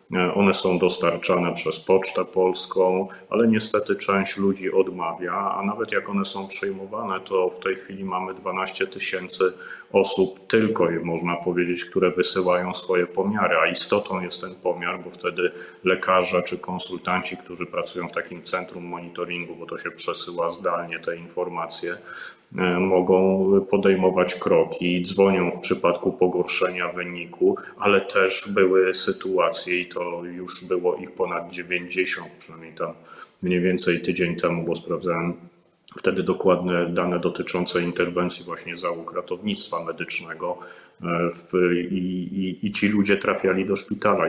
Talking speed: 135 wpm